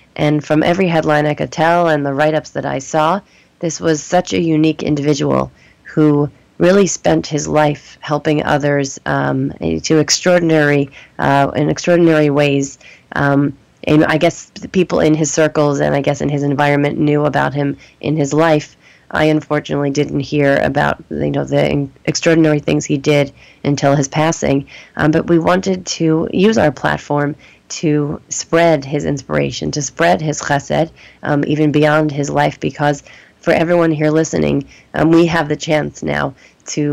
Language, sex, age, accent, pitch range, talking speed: English, female, 30-49, American, 145-155 Hz, 165 wpm